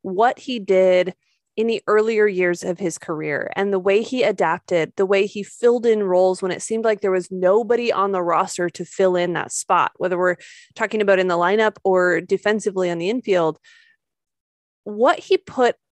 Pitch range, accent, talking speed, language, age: 190-240 Hz, American, 190 wpm, English, 20-39